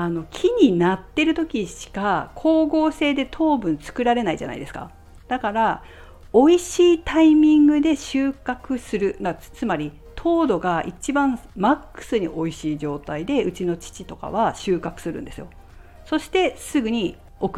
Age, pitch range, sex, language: 50-69, 160-260 Hz, female, Japanese